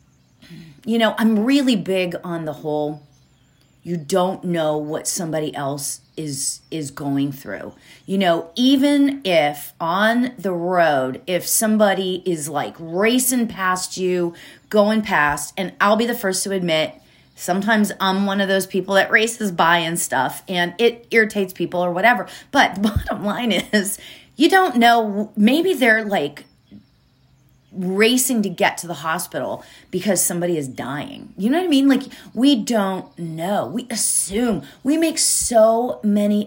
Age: 30-49